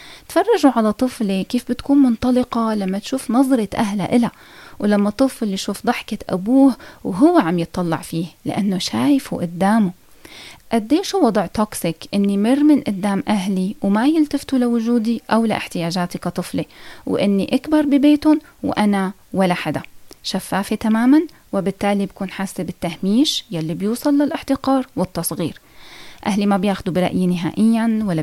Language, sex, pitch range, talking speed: Arabic, female, 190-255 Hz, 130 wpm